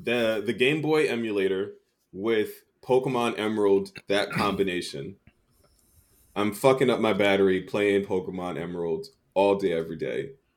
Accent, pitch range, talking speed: American, 95-130 Hz, 125 wpm